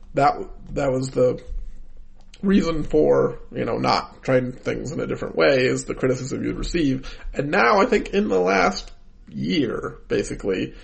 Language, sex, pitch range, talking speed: English, male, 130-170 Hz, 160 wpm